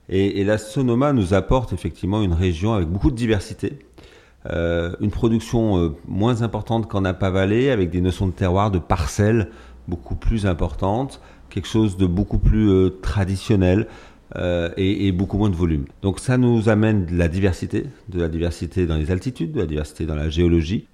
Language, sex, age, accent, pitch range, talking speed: French, male, 40-59, French, 85-105 Hz, 185 wpm